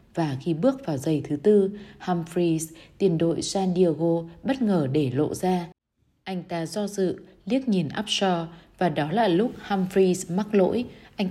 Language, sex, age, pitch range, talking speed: Vietnamese, female, 20-39, 155-200 Hz, 170 wpm